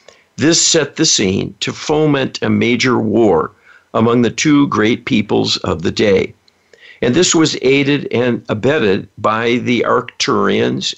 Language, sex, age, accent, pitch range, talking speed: English, male, 60-79, American, 115-150 Hz, 140 wpm